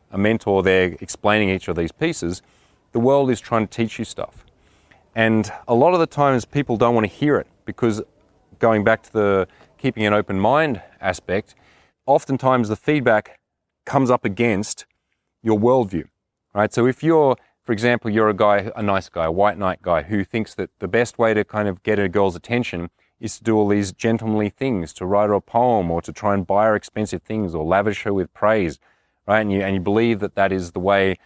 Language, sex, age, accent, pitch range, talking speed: English, male, 30-49, Australian, 100-120 Hz, 210 wpm